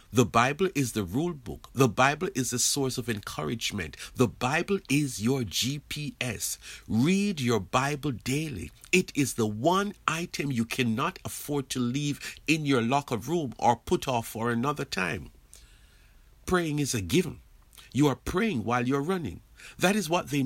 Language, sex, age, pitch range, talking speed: English, male, 60-79, 110-150 Hz, 165 wpm